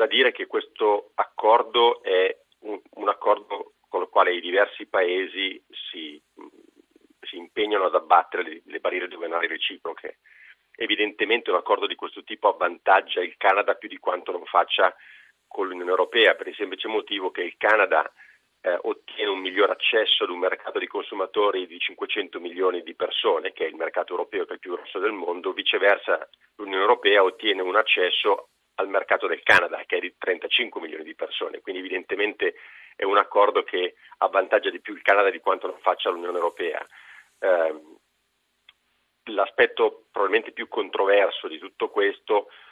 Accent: native